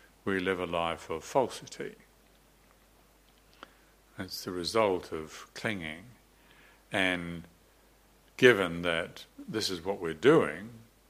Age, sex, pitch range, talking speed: 60-79, male, 90-115 Hz, 105 wpm